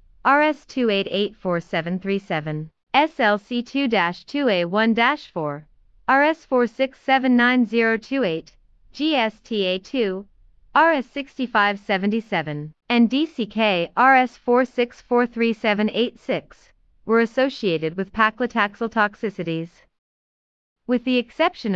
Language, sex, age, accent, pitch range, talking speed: English, female, 30-49, American, 180-245 Hz, 40 wpm